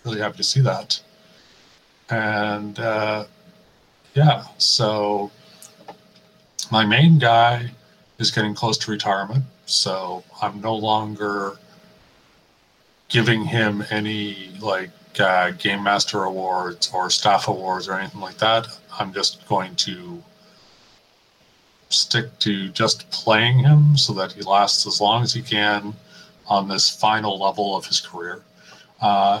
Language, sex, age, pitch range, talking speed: English, male, 40-59, 105-130 Hz, 125 wpm